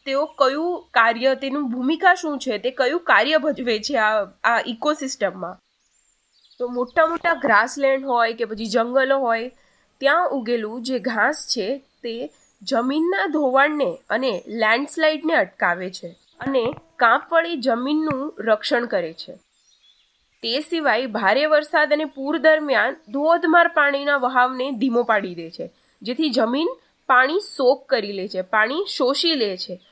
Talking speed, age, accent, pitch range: 130 wpm, 20-39, native, 240-320 Hz